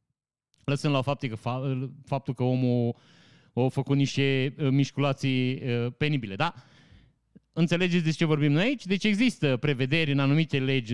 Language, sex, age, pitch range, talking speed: Romanian, male, 30-49, 130-180 Hz, 125 wpm